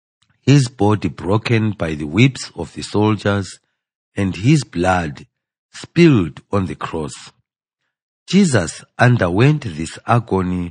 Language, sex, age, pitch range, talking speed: English, male, 50-69, 95-125 Hz, 110 wpm